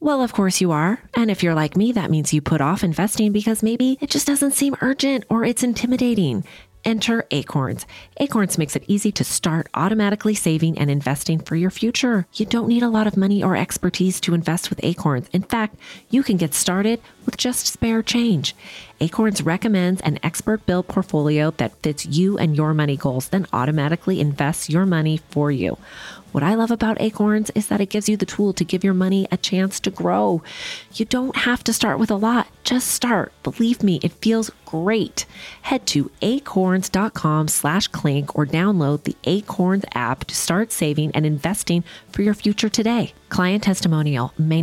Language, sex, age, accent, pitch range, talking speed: English, female, 30-49, American, 145-210 Hz, 190 wpm